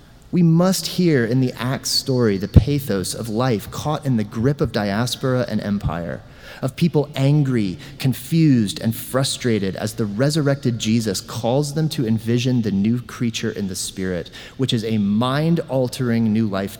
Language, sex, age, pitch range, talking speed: English, male, 30-49, 110-140 Hz, 160 wpm